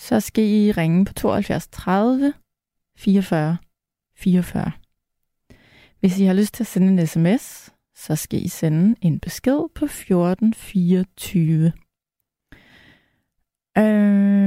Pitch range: 185-235 Hz